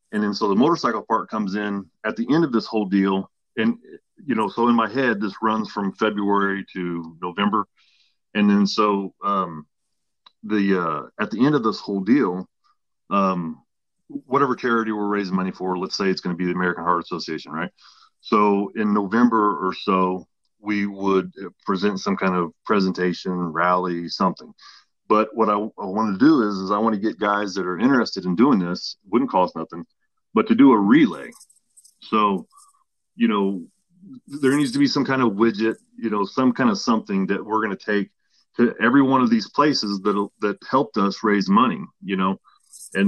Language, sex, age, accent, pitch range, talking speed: English, male, 30-49, American, 95-120 Hz, 190 wpm